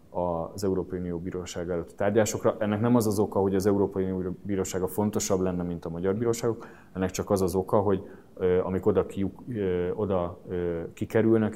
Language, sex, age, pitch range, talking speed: Hungarian, male, 30-49, 90-110 Hz, 170 wpm